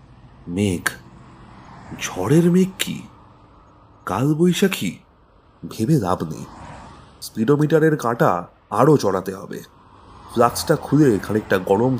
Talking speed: 85 wpm